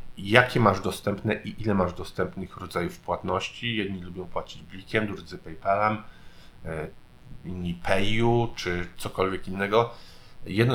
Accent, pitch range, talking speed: native, 90-110 Hz, 115 wpm